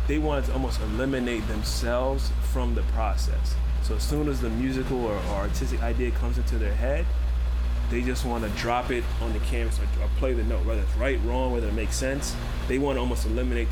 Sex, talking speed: male, 210 wpm